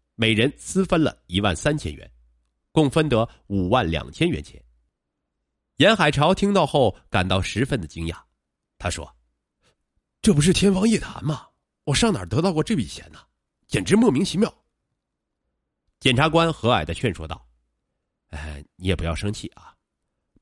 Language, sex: Chinese, male